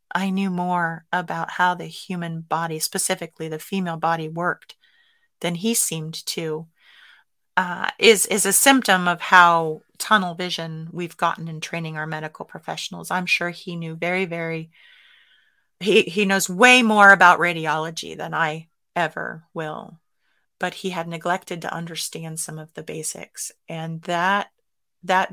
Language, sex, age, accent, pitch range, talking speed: English, female, 30-49, American, 165-190 Hz, 150 wpm